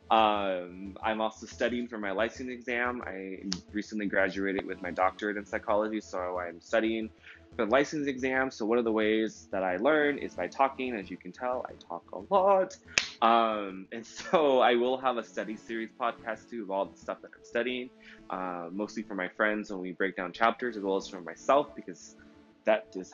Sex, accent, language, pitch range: male, American, English, 95-125 Hz